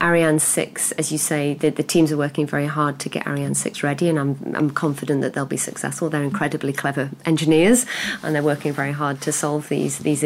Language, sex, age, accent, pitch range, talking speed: Swedish, female, 40-59, British, 145-165 Hz, 220 wpm